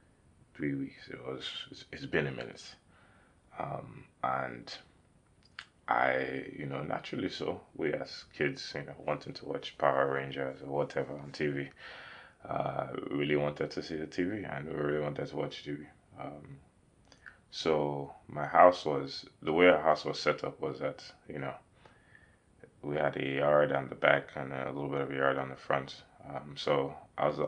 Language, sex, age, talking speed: English, male, 20-39, 175 wpm